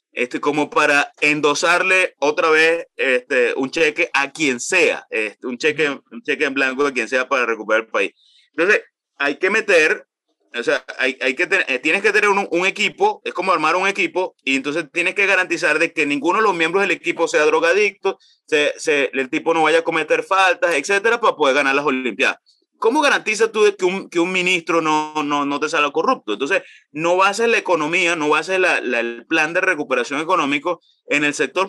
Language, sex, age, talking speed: Spanish, male, 30-49, 210 wpm